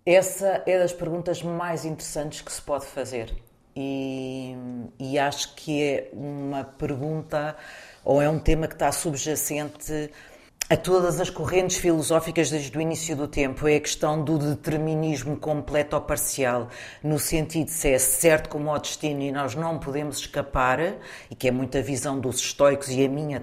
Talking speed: 170 wpm